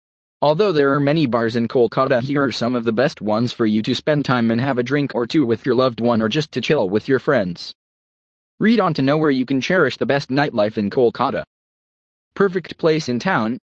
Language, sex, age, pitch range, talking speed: English, male, 20-39, 120-160 Hz, 230 wpm